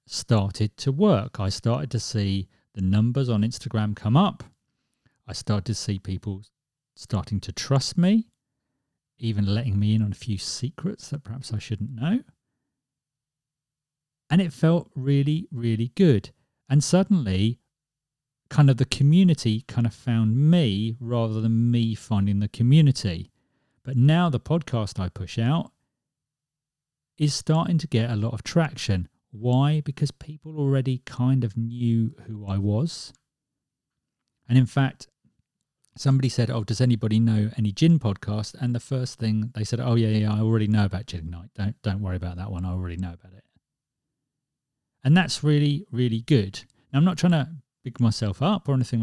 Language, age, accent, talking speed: English, 40-59, British, 165 wpm